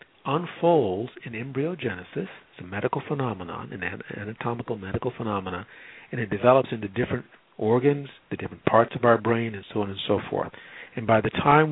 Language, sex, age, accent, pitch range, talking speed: English, male, 50-69, American, 105-130 Hz, 170 wpm